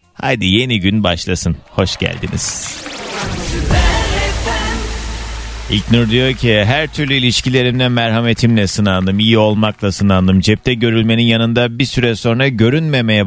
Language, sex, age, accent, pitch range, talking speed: Turkish, male, 30-49, native, 110-150 Hz, 110 wpm